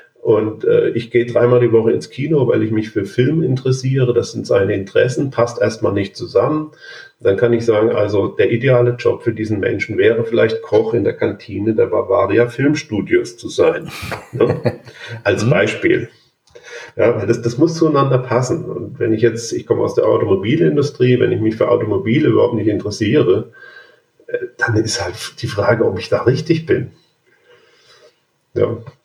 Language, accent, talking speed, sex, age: German, German, 170 wpm, male, 40-59